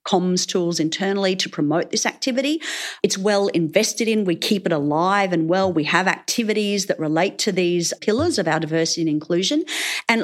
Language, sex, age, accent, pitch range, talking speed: English, female, 40-59, Australian, 165-230 Hz, 180 wpm